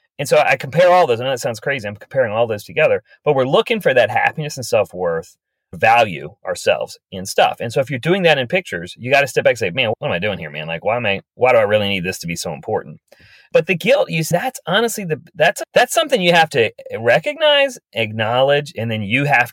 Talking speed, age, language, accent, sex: 250 wpm, 30-49, English, American, male